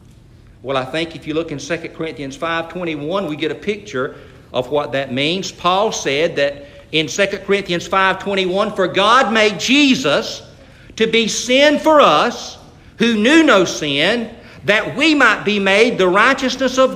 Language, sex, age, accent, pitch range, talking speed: English, male, 50-69, American, 165-240 Hz, 165 wpm